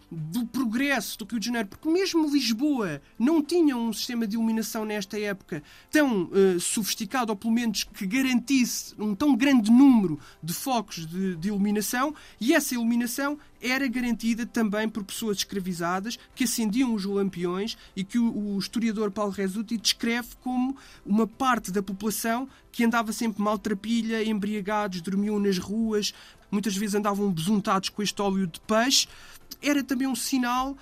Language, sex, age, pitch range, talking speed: Portuguese, male, 20-39, 205-250 Hz, 160 wpm